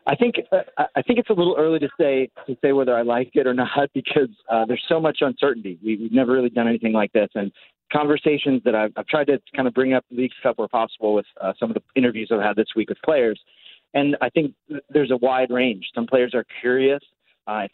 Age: 30-49